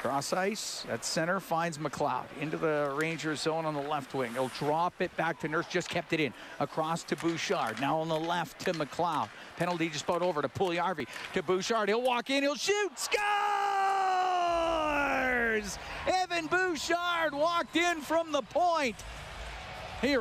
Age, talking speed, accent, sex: 50-69, 165 wpm, American, male